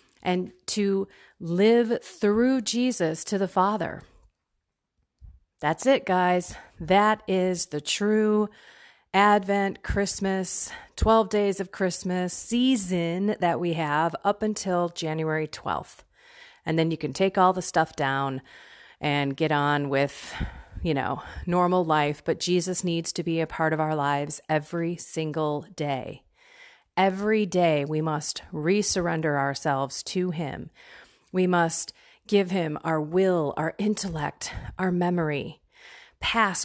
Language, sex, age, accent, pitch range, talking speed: English, female, 30-49, American, 160-210 Hz, 130 wpm